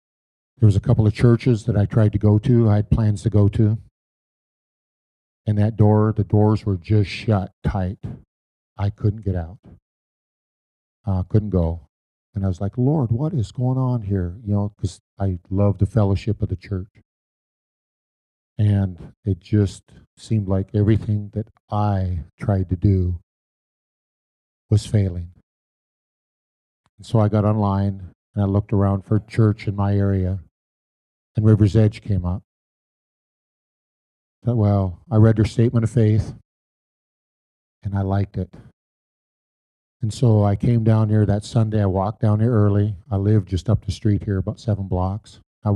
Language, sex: English, male